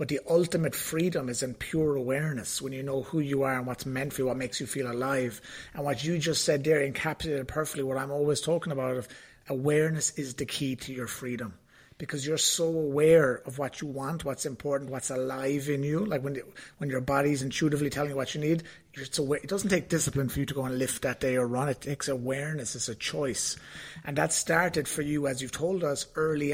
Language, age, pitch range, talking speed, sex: English, 30-49, 135-165 Hz, 230 wpm, male